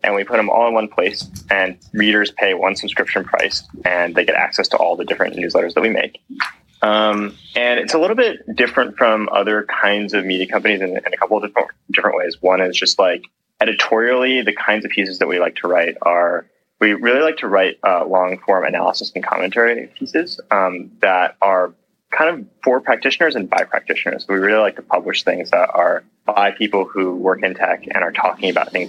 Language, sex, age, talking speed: English, male, 20-39, 215 wpm